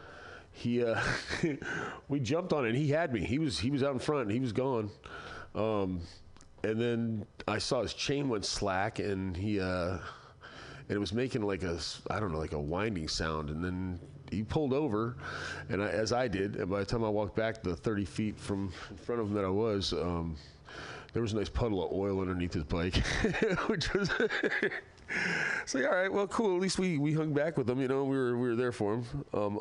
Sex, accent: male, American